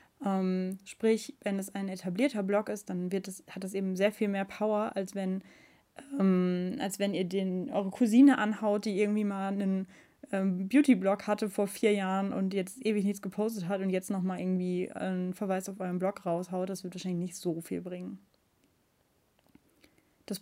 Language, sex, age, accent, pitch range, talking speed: German, female, 10-29, German, 190-215 Hz, 160 wpm